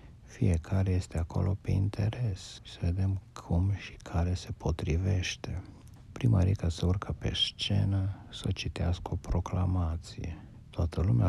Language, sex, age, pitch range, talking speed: Romanian, male, 60-79, 90-110 Hz, 120 wpm